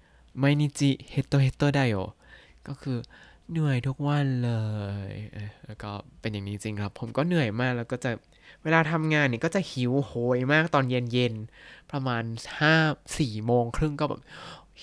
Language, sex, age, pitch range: Thai, male, 20-39, 110-145 Hz